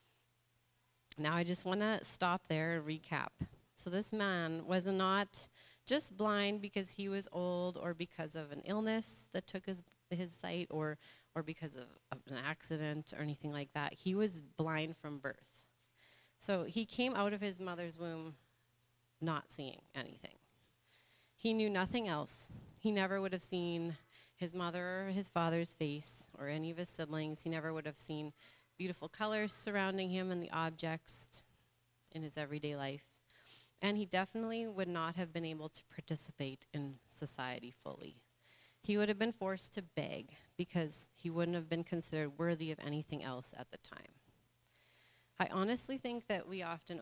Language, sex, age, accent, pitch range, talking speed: English, female, 30-49, American, 140-185 Hz, 170 wpm